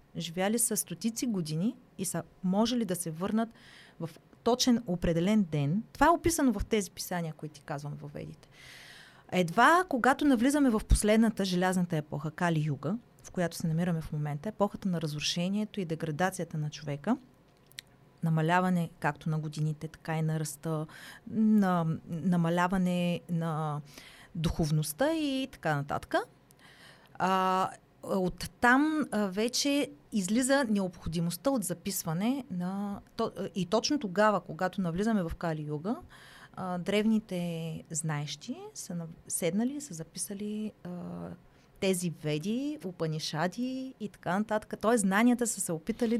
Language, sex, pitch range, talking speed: Bulgarian, female, 165-215 Hz, 120 wpm